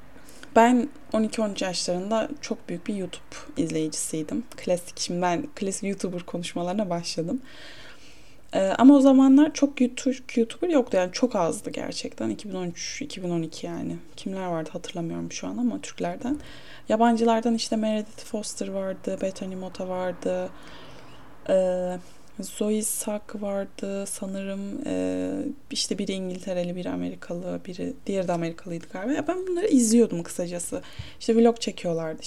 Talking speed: 125 wpm